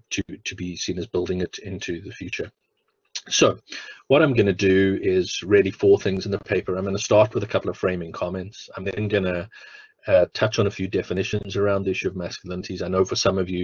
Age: 30-49